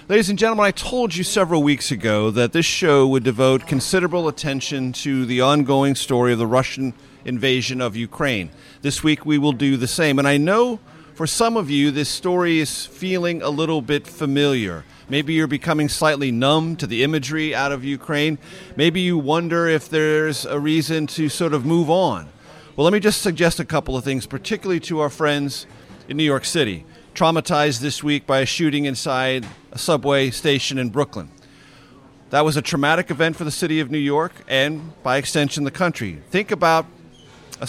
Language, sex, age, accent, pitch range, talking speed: English, male, 40-59, American, 135-160 Hz, 190 wpm